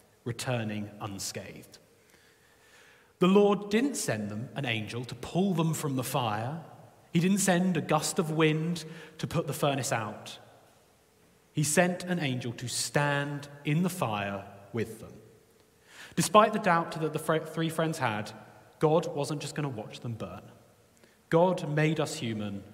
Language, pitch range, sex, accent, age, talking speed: English, 115-170 Hz, male, British, 30-49, 155 wpm